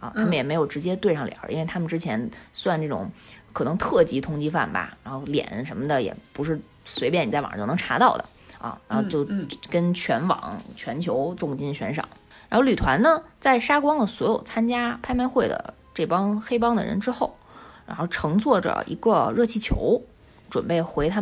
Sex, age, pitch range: female, 20-39, 175-260 Hz